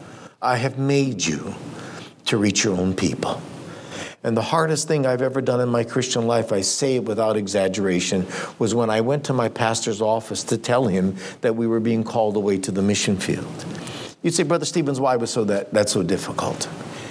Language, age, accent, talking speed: English, 60-79, American, 195 wpm